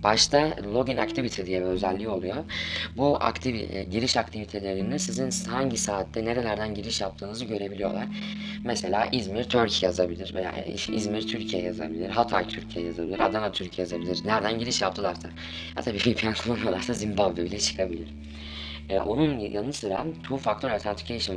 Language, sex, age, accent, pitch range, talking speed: Turkish, female, 10-29, native, 95-120 Hz, 140 wpm